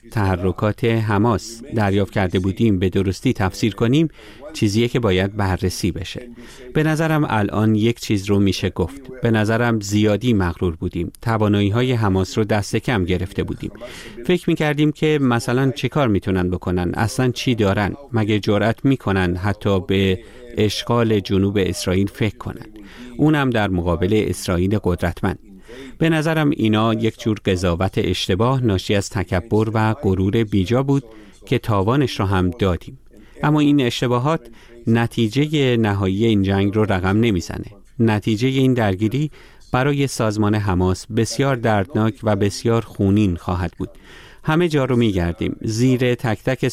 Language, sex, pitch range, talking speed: Persian, male, 95-125 Hz, 140 wpm